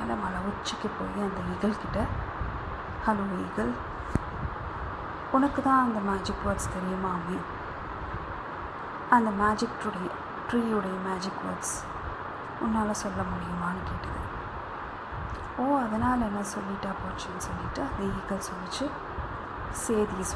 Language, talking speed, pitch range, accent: Tamil, 90 wpm, 190-235 Hz, native